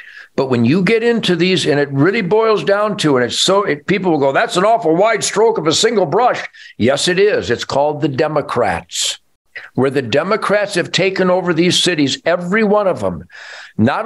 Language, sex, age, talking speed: English, male, 60-79, 200 wpm